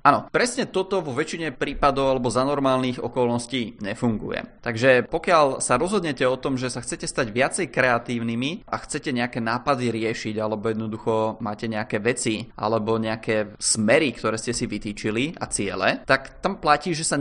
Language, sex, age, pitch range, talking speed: Czech, male, 20-39, 120-150 Hz, 165 wpm